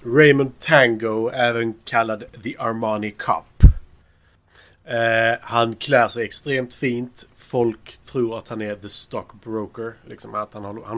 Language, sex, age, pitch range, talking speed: Swedish, male, 30-49, 100-120 Hz, 135 wpm